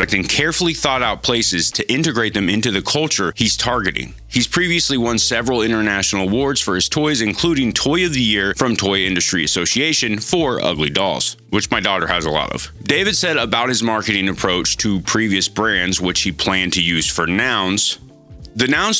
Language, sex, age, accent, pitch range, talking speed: English, male, 30-49, American, 95-125 Hz, 185 wpm